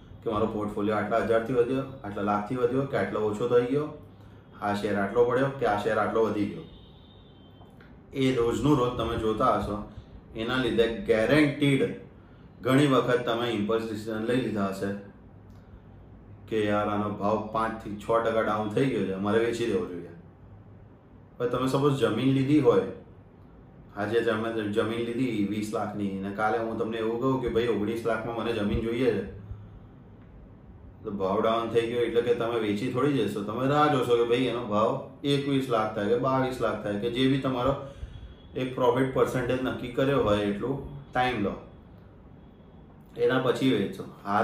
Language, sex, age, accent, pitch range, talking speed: Gujarati, male, 30-49, native, 105-130 Hz, 155 wpm